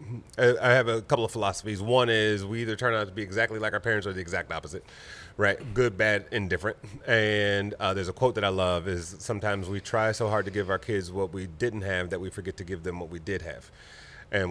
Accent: American